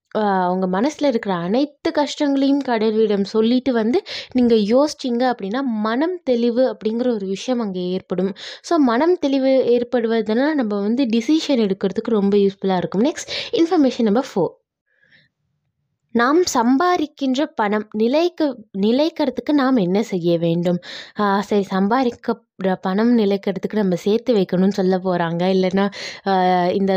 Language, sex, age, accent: Tamil, female, 20-39, native